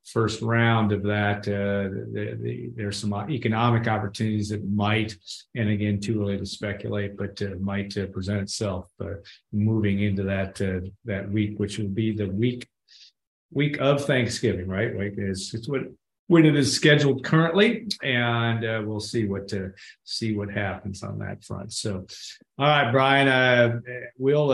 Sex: male